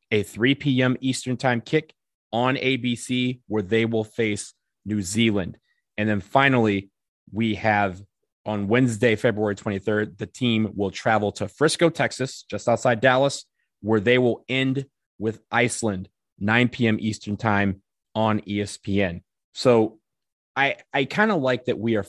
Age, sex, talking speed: 20-39, male, 145 wpm